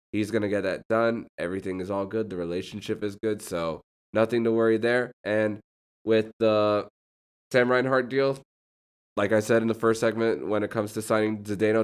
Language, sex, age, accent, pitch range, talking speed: English, male, 20-39, American, 100-125 Hz, 195 wpm